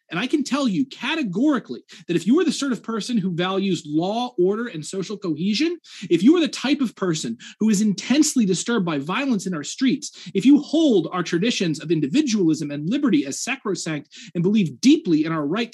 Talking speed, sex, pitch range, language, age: 205 wpm, male, 175-255 Hz, English, 30-49